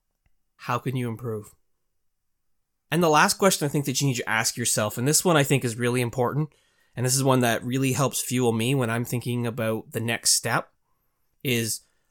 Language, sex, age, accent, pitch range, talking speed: English, male, 30-49, American, 115-150 Hz, 205 wpm